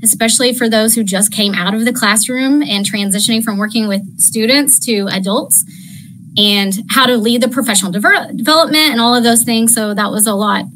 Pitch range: 205-250 Hz